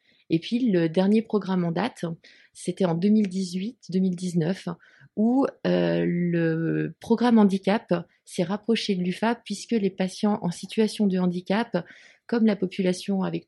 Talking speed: 135 wpm